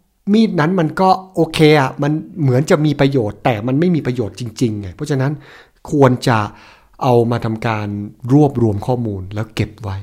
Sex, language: male, Thai